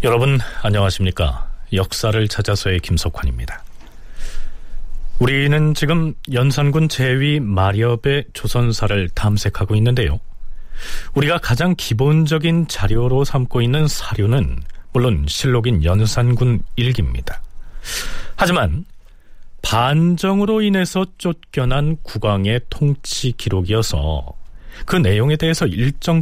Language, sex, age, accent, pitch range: Korean, male, 40-59, native, 95-145 Hz